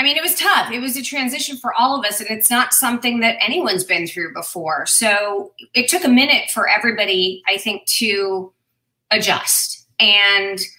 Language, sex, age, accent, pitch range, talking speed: English, female, 30-49, American, 195-240 Hz, 190 wpm